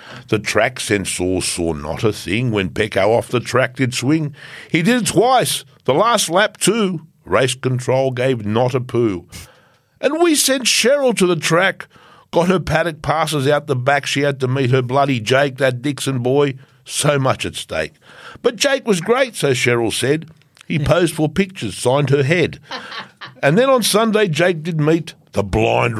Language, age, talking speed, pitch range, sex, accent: English, 60-79, 180 wpm, 115-160 Hz, male, Australian